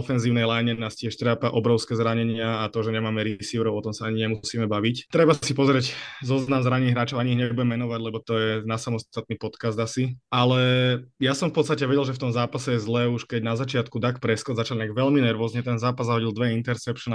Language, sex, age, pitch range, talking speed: Slovak, male, 20-39, 110-120 Hz, 215 wpm